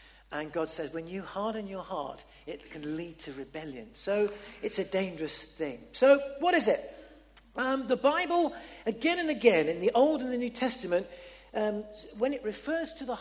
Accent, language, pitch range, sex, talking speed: British, English, 160-245 Hz, male, 185 wpm